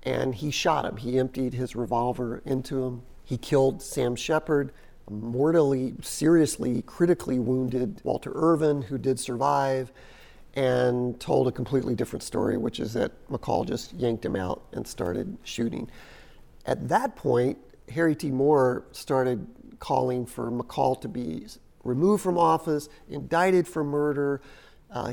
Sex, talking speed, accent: male, 140 wpm, American